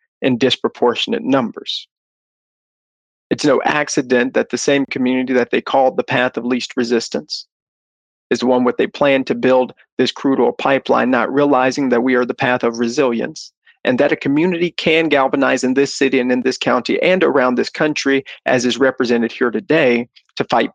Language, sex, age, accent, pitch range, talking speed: English, male, 40-59, American, 120-145 Hz, 180 wpm